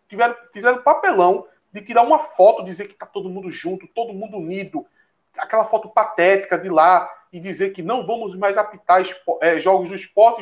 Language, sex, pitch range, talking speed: Portuguese, male, 200-310 Hz, 185 wpm